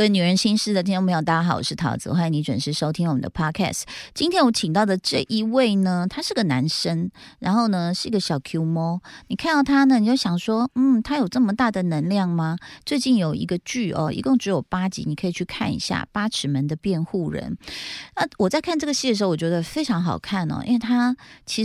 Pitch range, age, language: 160-225 Hz, 30-49, Chinese